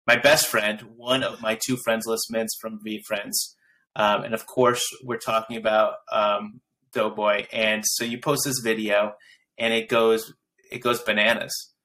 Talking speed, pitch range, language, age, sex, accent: 170 wpm, 110-125 Hz, English, 30-49, male, American